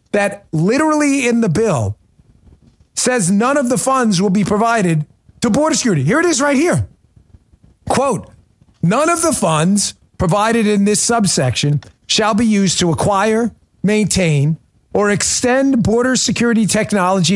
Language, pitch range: English, 140-220 Hz